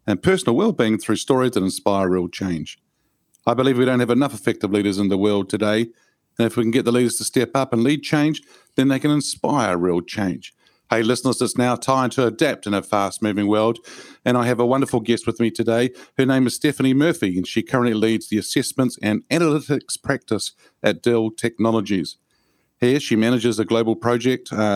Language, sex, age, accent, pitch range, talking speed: English, male, 50-69, Australian, 110-130 Hz, 205 wpm